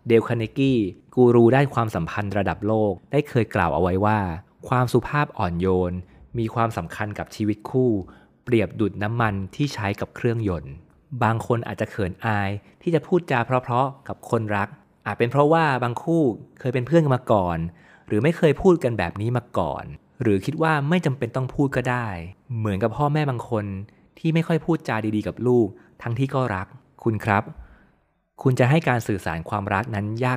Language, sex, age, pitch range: Thai, male, 30-49, 95-125 Hz